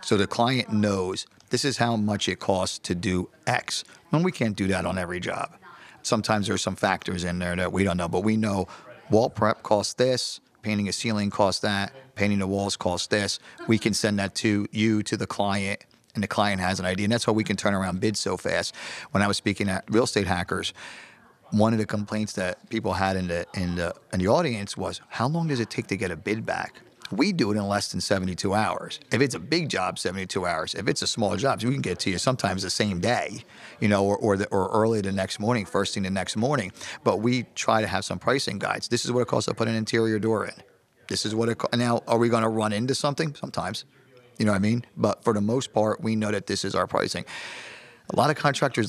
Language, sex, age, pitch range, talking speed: English, male, 50-69, 95-115 Hz, 250 wpm